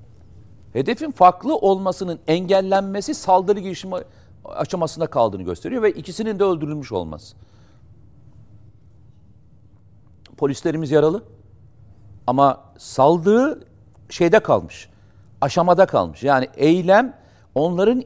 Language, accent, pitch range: Turkish, native, 105-165 Hz